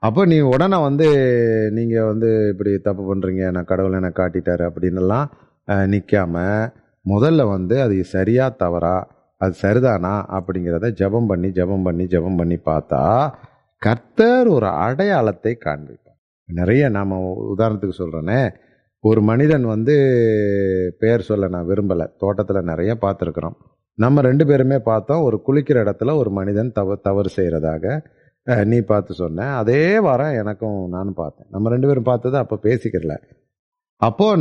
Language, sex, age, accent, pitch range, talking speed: Tamil, male, 30-49, native, 95-130 Hz, 130 wpm